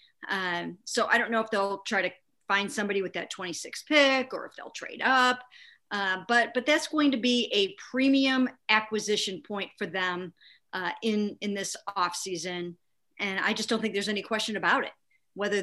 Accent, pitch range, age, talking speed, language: American, 190-235 Hz, 50-69, 190 wpm, English